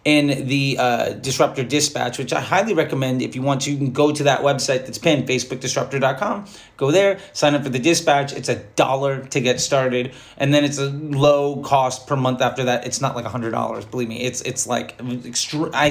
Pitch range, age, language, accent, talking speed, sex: 125-145 Hz, 30-49, English, American, 215 wpm, male